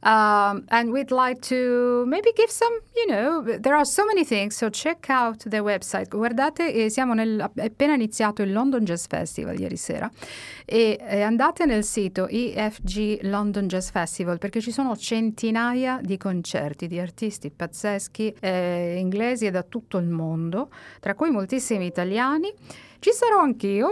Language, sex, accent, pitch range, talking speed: English, female, Italian, 180-235 Hz, 155 wpm